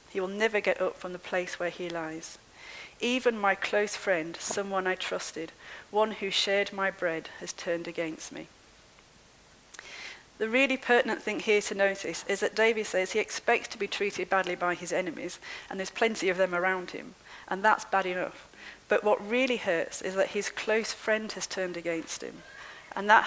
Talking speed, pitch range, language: 190 wpm, 185-220 Hz, English